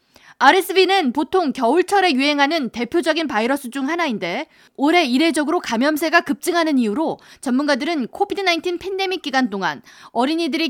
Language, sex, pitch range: Korean, female, 245-340 Hz